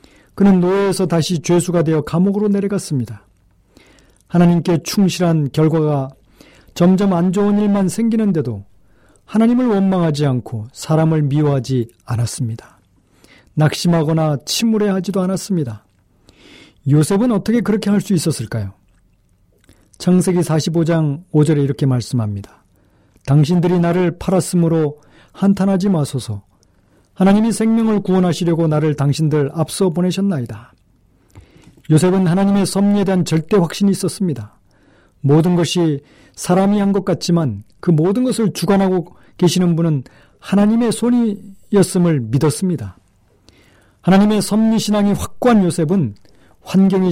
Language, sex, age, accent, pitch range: Korean, male, 40-59, native, 130-190 Hz